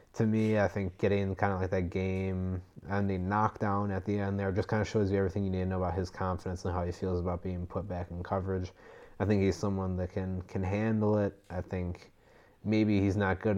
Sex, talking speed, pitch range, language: male, 240 wpm, 90-105 Hz, English